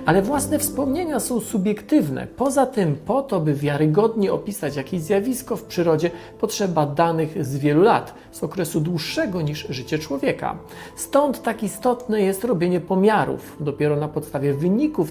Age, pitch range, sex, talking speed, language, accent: 40-59, 155-215 Hz, male, 145 wpm, Polish, native